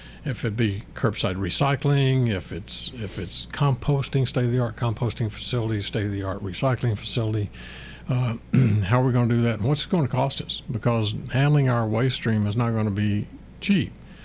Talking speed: 175 wpm